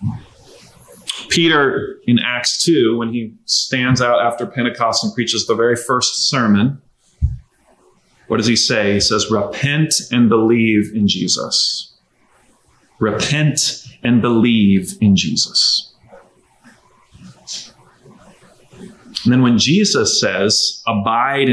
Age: 30-49